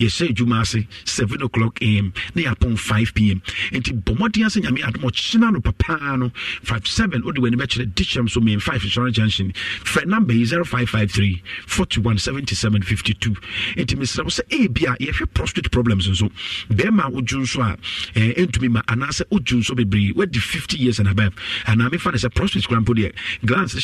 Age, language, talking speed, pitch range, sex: 50-69, English, 195 wpm, 105-125 Hz, male